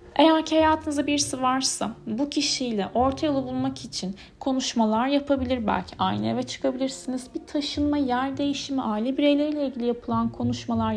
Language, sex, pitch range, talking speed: Turkish, female, 210-275 Hz, 135 wpm